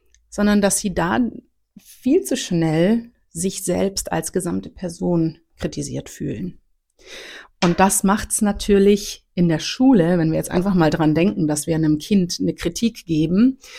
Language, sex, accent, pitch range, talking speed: German, female, German, 165-210 Hz, 155 wpm